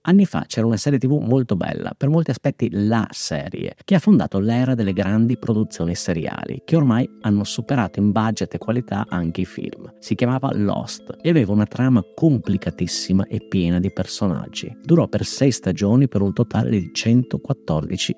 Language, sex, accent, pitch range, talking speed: Italian, male, native, 95-130 Hz, 175 wpm